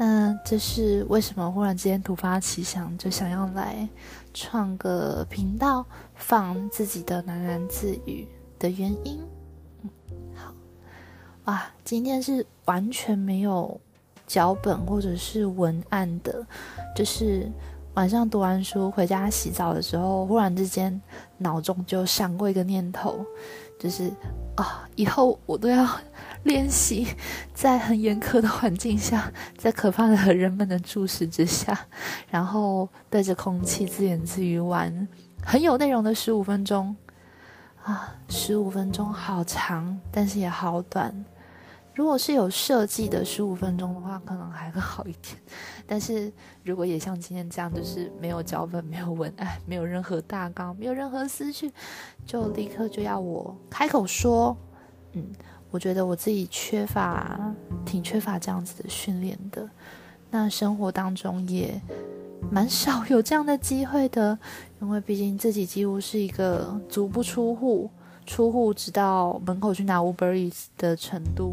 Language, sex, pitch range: Chinese, female, 175-215 Hz